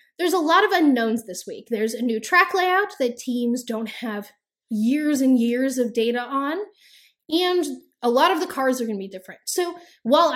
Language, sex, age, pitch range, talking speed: English, female, 10-29, 230-315 Hz, 205 wpm